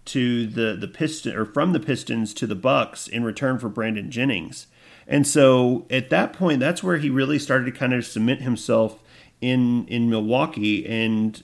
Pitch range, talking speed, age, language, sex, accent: 115-130 Hz, 185 wpm, 40-59, English, male, American